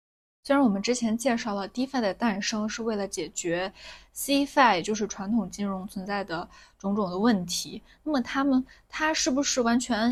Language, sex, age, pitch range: Chinese, female, 20-39, 195-245 Hz